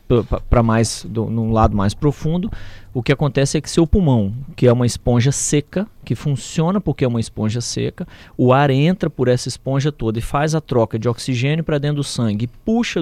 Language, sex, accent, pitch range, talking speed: Portuguese, male, Brazilian, 125-175 Hz, 205 wpm